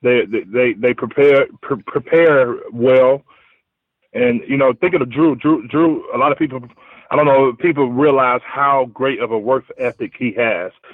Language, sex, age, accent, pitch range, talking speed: English, male, 30-49, American, 125-150 Hz, 175 wpm